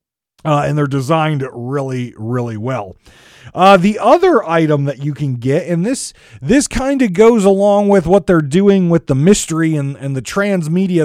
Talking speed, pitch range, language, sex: 180 wpm, 135-200 Hz, English, male